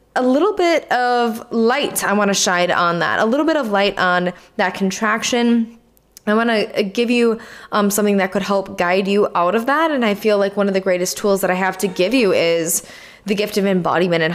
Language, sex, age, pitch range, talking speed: English, female, 20-39, 180-230 Hz, 230 wpm